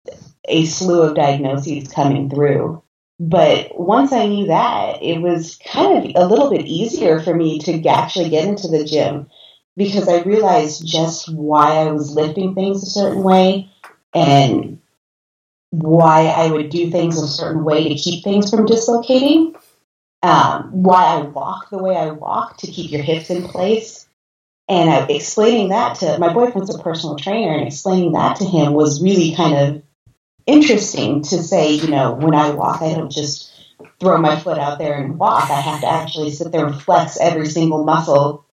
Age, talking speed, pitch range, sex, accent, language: 30-49, 180 wpm, 150-185 Hz, female, American, English